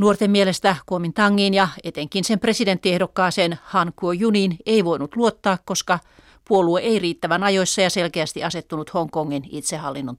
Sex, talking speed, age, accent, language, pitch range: female, 140 wpm, 40-59, native, Finnish, 170-205 Hz